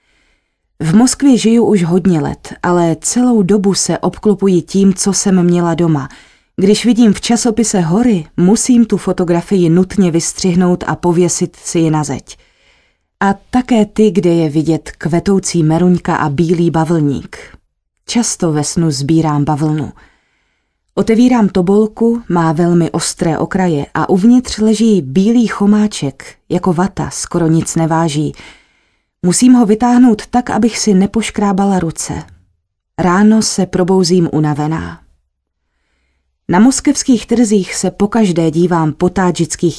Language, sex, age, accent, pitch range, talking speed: Czech, female, 30-49, native, 165-210 Hz, 125 wpm